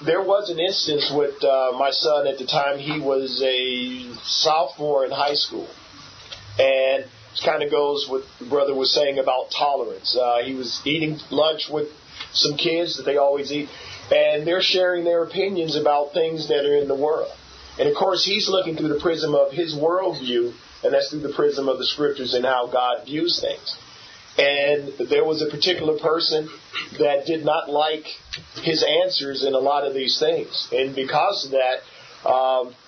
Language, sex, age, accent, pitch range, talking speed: English, male, 40-59, American, 135-165 Hz, 185 wpm